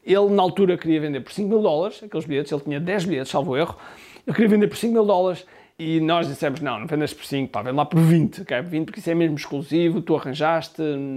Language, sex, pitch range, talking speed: Portuguese, male, 155-215 Hz, 245 wpm